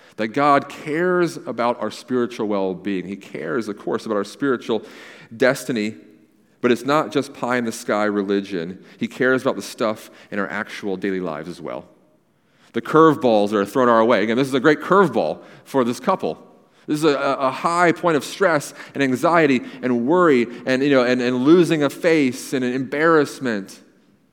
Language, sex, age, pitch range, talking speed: English, male, 40-59, 110-140 Hz, 175 wpm